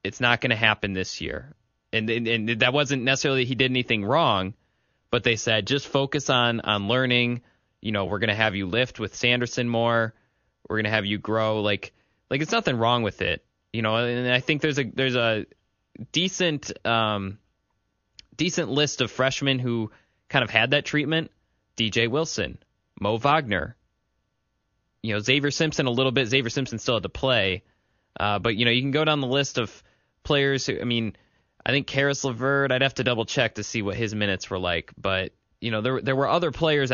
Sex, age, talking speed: male, 20-39, 205 wpm